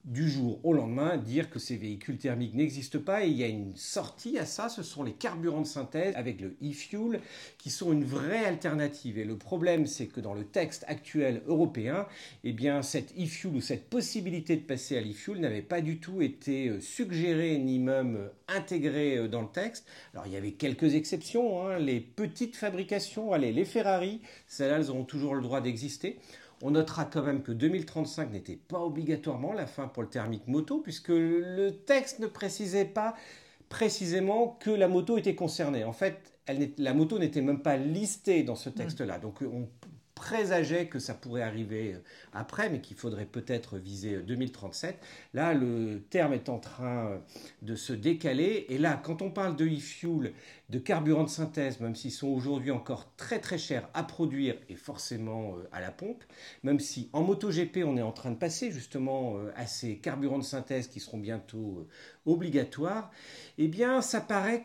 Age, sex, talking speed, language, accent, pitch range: 50-69, male, 185 wpm, French, French, 125-175 Hz